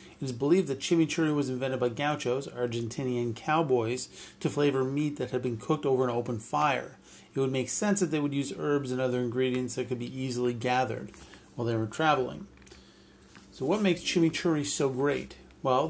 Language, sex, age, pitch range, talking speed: English, male, 40-59, 120-145 Hz, 190 wpm